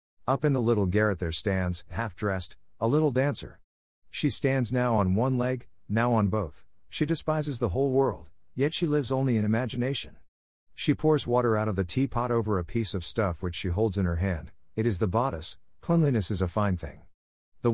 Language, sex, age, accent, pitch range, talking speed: English, male, 50-69, American, 90-125 Hz, 200 wpm